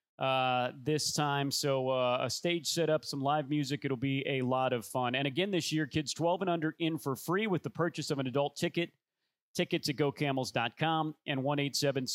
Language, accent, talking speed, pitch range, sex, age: English, American, 200 wpm, 135-165 Hz, male, 40-59